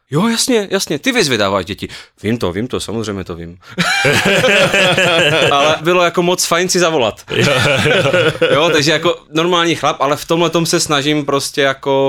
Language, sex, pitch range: Czech, male, 95-140 Hz